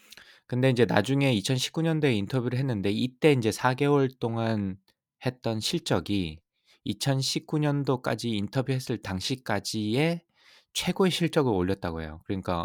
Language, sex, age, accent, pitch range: Korean, male, 20-39, native, 90-125 Hz